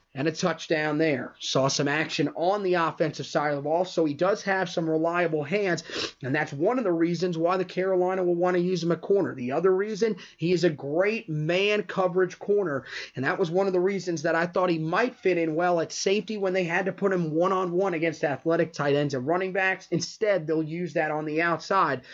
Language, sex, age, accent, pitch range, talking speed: English, male, 30-49, American, 155-190 Hz, 230 wpm